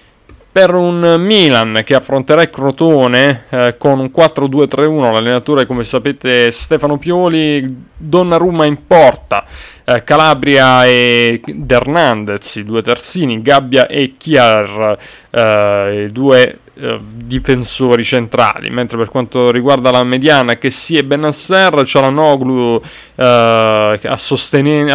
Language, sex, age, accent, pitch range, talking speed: Italian, male, 30-49, native, 115-145 Hz, 120 wpm